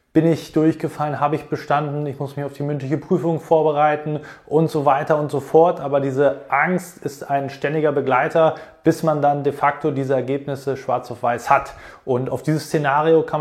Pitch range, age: 130-155 Hz, 20-39